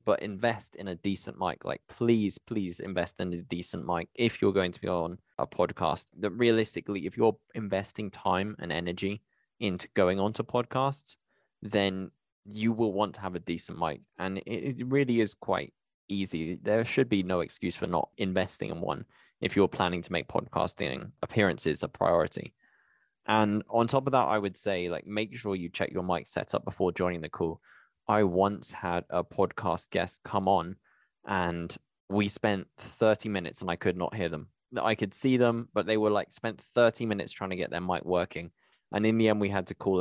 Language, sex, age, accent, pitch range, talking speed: English, male, 10-29, British, 90-115 Hz, 200 wpm